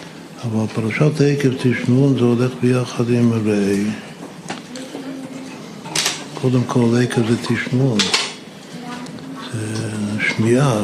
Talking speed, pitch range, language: 85 wpm, 110-125 Hz, Hebrew